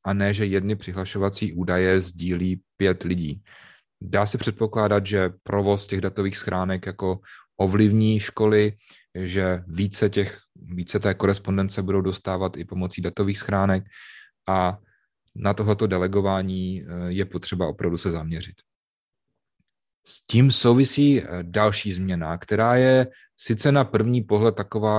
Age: 30-49